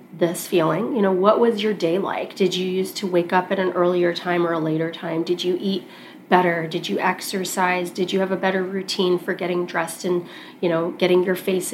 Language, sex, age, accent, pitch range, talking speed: English, female, 30-49, American, 175-195 Hz, 230 wpm